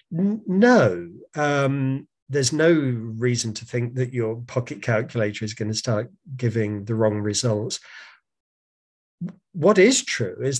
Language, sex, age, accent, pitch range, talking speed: Hebrew, male, 40-59, British, 120-160 Hz, 135 wpm